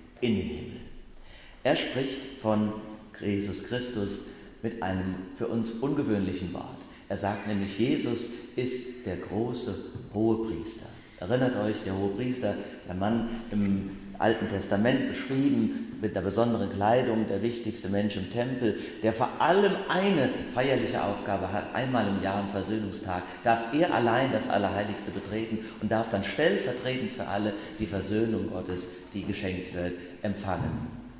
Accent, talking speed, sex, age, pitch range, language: German, 140 wpm, male, 40-59, 100-125 Hz, German